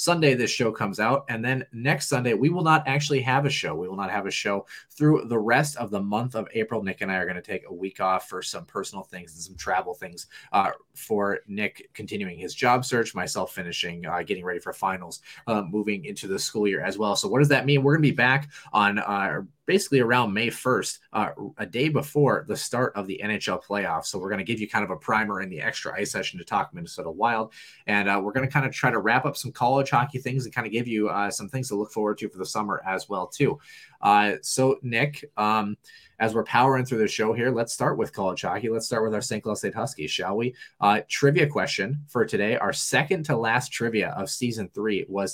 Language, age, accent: English, 30-49, American